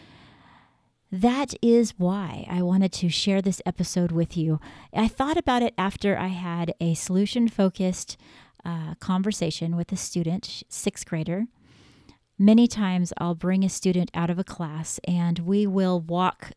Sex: female